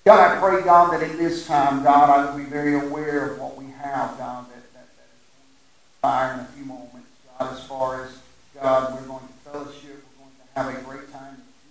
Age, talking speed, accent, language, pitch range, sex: 50-69, 225 wpm, American, English, 140-170 Hz, male